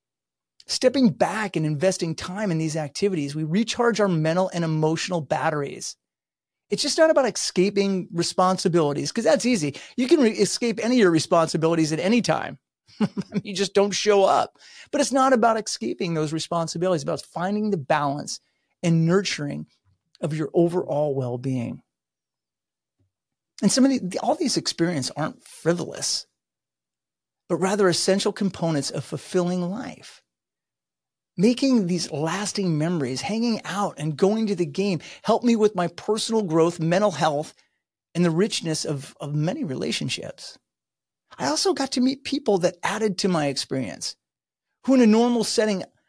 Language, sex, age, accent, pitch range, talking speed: English, male, 30-49, American, 160-220 Hz, 150 wpm